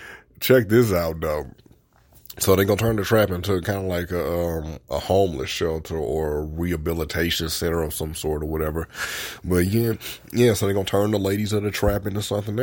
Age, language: 20-39, English